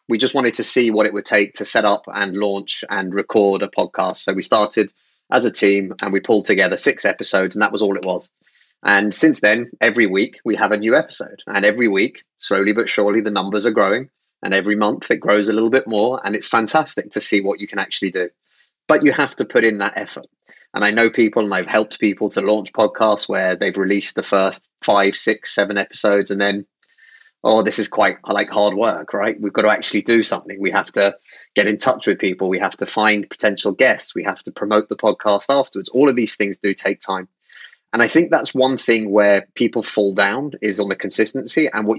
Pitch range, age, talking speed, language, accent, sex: 100-120 Hz, 30-49, 235 wpm, English, British, male